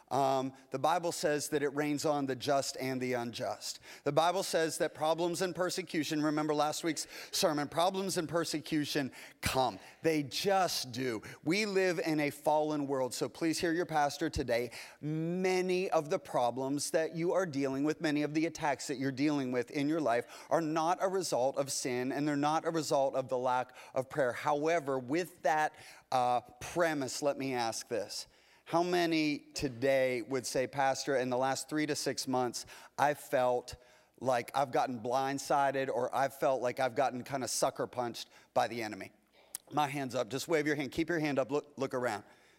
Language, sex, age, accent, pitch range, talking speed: English, male, 30-49, American, 135-160 Hz, 190 wpm